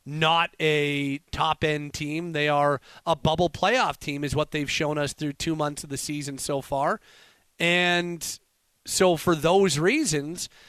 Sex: male